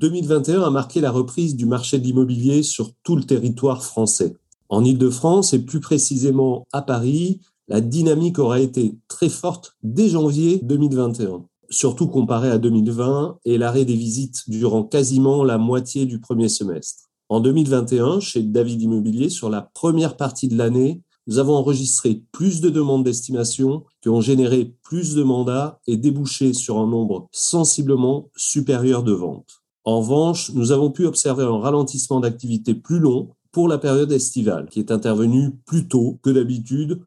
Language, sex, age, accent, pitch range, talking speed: French, male, 40-59, French, 120-145 Hz, 160 wpm